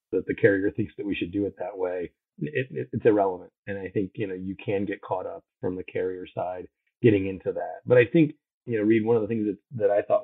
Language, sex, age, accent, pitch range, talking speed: English, male, 30-49, American, 95-110 Hz, 270 wpm